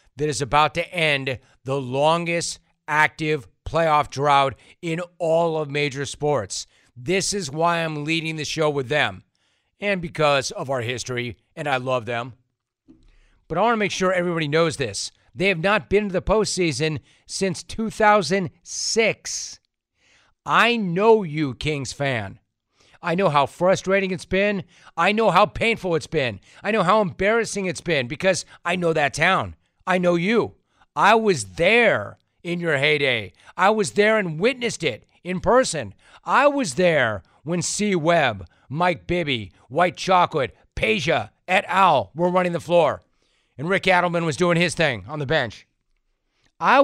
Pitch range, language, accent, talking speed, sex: 140-190 Hz, English, American, 160 wpm, male